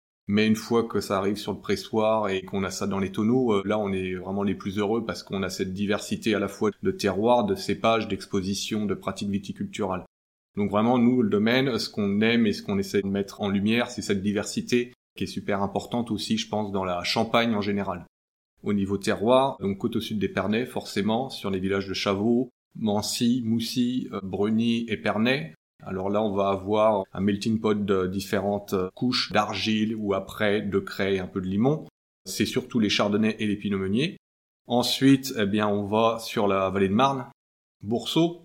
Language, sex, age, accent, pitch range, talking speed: French, male, 30-49, French, 100-115 Hz, 205 wpm